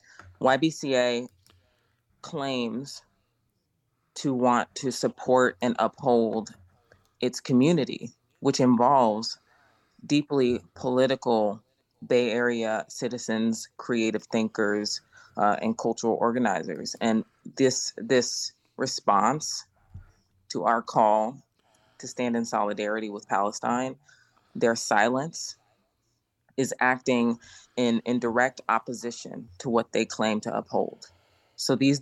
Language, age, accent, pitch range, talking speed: English, 20-39, American, 110-130 Hz, 95 wpm